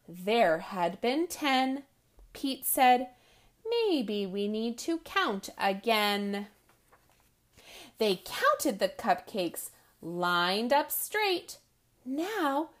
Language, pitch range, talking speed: English, 185-315 Hz, 95 wpm